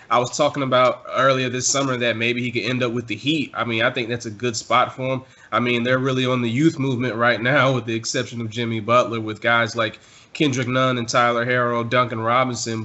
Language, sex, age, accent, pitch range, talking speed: English, male, 20-39, American, 110-125 Hz, 245 wpm